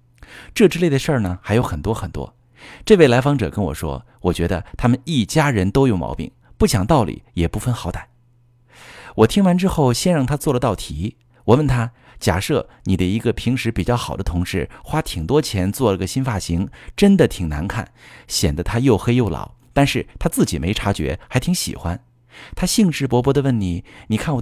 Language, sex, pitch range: Chinese, male, 90-125 Hz